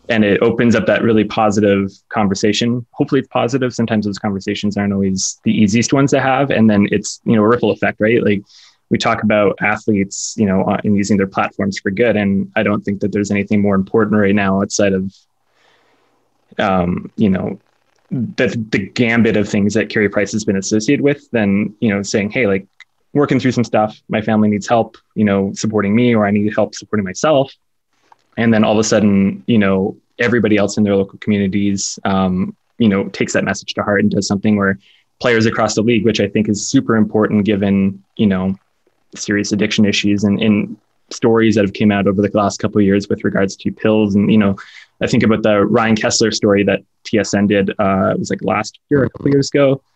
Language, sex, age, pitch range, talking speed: English, male, 20-39, 100-110 Hz, 215 wpm